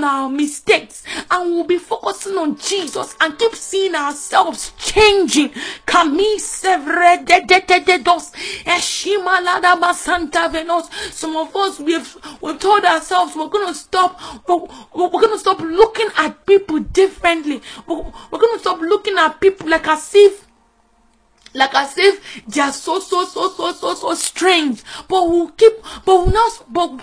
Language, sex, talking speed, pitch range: English, female, 125 wpm, 315-395 Hz